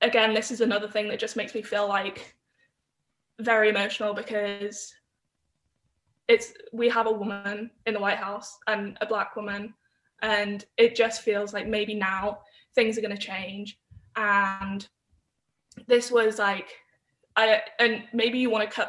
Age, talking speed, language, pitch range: 10-29, 160 wpm, Slovak, 205-225 Hz